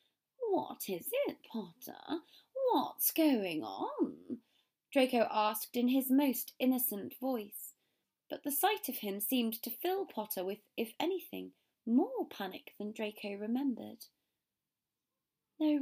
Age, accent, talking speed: 20-39, British, 120 wpm